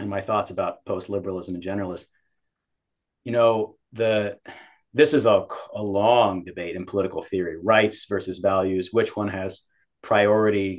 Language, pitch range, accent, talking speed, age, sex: English, 100-115 Hz, American, 150 wpm, 30-49, male